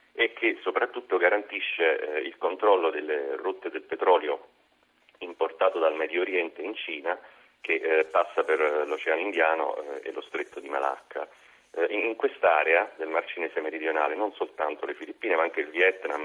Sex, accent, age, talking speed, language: male, native, 40-59, 165 wpm, Italian